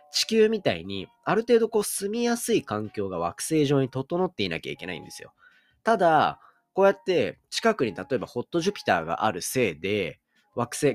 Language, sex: Japanese, male